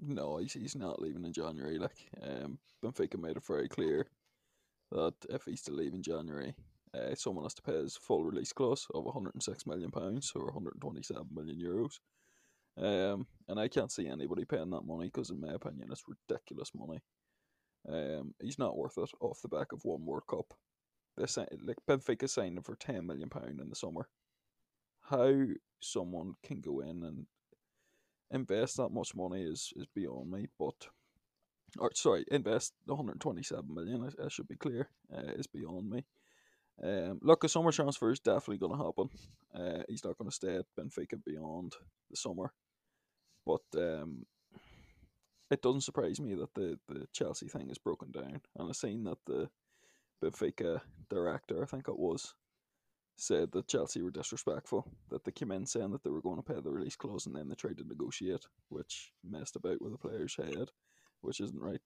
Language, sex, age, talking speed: English, male, 20-39, 180 wpm